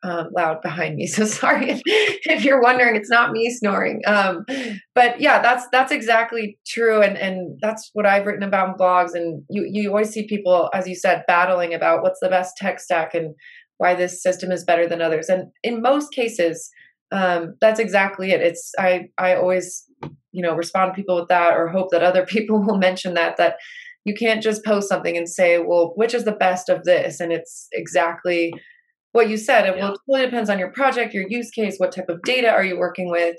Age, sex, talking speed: 20-39, female, 215 wpm